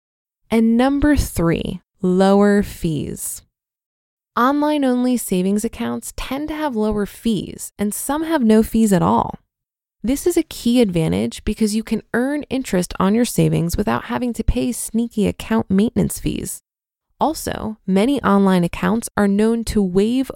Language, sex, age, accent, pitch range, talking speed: English, female, 20-39, American, 180-235 Hz, 145 wpm